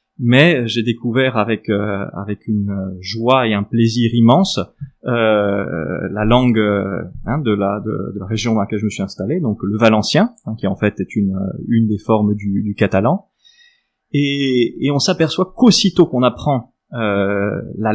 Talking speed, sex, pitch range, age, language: 175 wpm, male, 110-135 Hz, 20-39, French